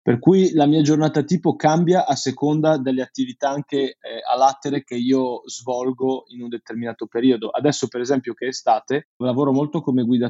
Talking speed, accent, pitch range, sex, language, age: 185 wpm, native, 115-135 Hz, male, Italian, 20-39